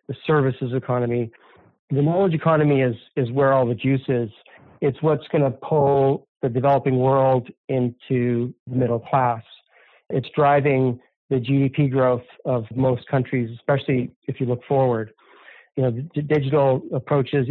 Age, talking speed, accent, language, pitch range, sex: 40-59, 145 wpm, American, English, 125-145 Hz, male